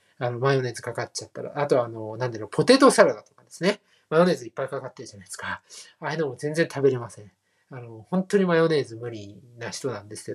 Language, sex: Japanese, male